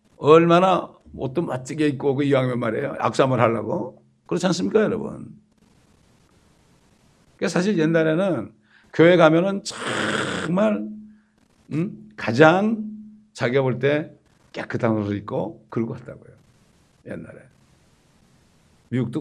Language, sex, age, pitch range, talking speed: English, male, 60-79, 125-185 Hz, 85 wpm